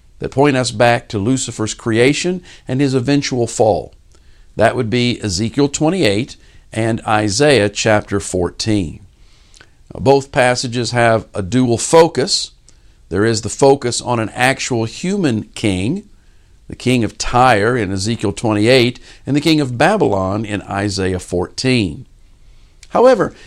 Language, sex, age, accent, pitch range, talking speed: English, male, 50-69, American, 100-135 Hz, 130 wpm